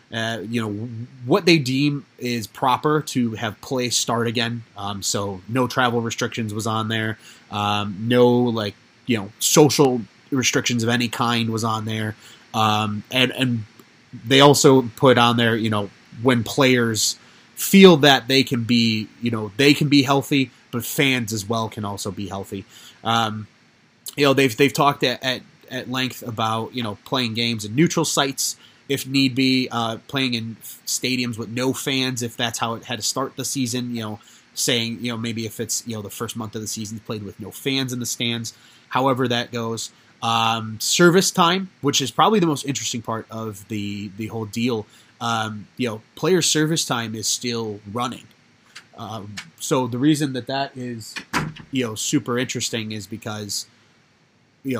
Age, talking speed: 30-49, 180 wpm